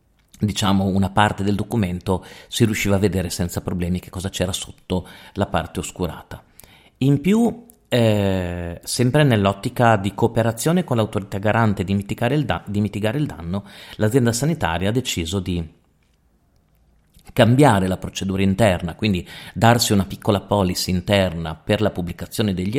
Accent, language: native, Italian